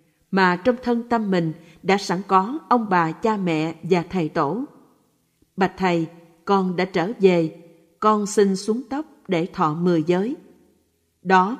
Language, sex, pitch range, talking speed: Vietnamese, female, 170-210 Hz, 155 wpm